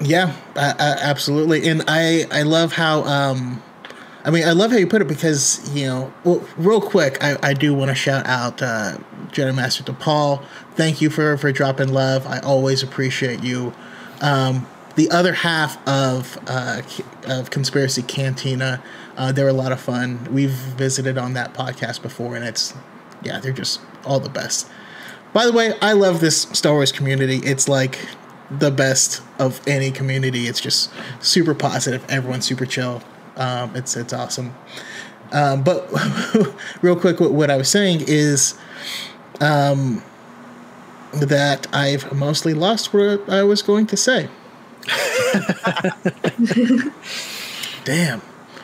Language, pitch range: English, 130-175 Hz